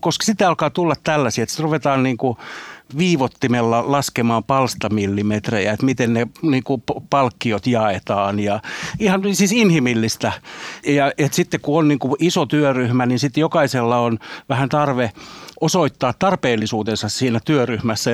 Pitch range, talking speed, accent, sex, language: 115-150 Hz, 135 wpm, native, male, Finnish